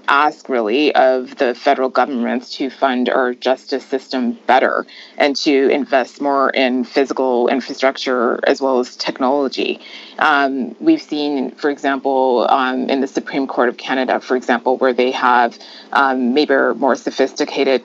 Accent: American